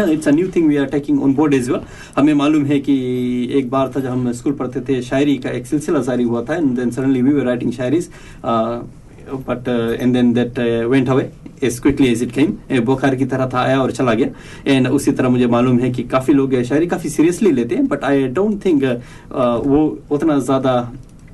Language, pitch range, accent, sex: Hindi, 125-145 Hz, native, male